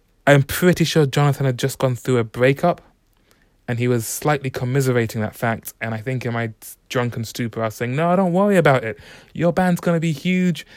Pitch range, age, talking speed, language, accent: 110-140 Hz, 20-39, 215 wpm, English, British